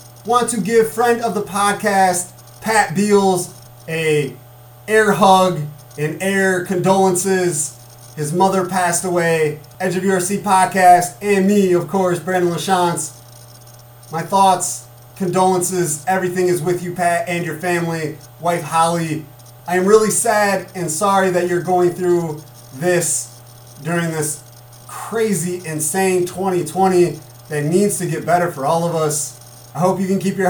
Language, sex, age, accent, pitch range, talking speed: English, male, 30-49, American, 150-190 Hz, 145 wpm